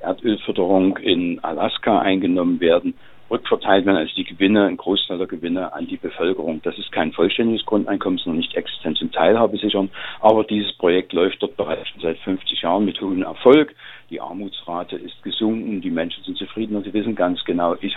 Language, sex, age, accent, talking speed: German, male, 50-69, German, 180 wpm